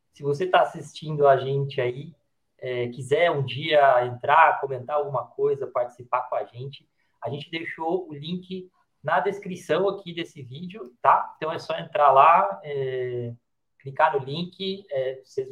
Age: 20-39